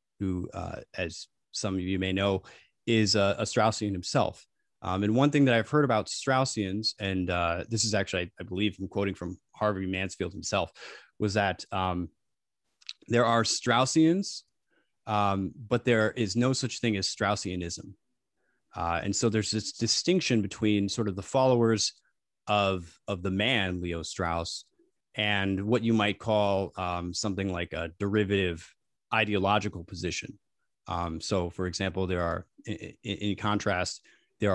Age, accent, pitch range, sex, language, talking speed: 20-39, American, 95-115 Hz, male, English, 155 wpm